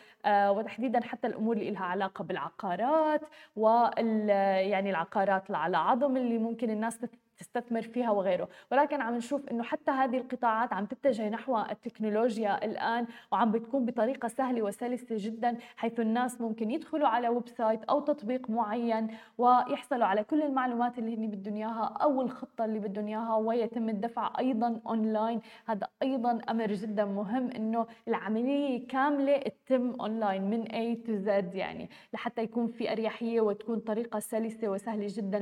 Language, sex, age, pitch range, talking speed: Arabic, female, 20-39, 215-255 Hz, 145 wpm